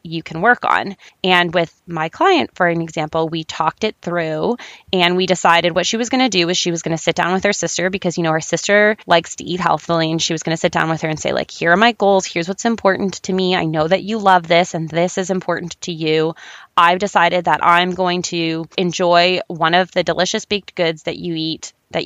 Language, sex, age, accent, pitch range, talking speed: English, female, 20-39, American, 170-200 Hz, 255 wpm